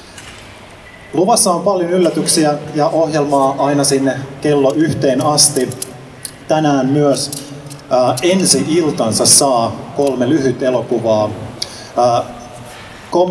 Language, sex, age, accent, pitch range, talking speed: Finnish, male, 30-49, native, 120-140 Hz, 85 wpm